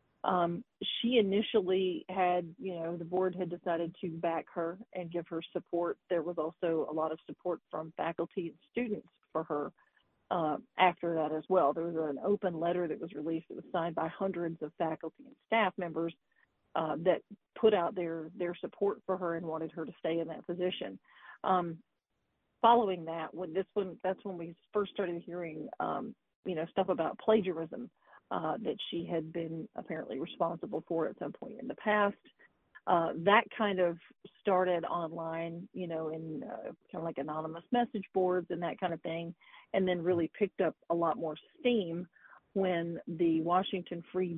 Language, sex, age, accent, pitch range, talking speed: English, female, 40-59, American, 165-185 Hz, 185 wpm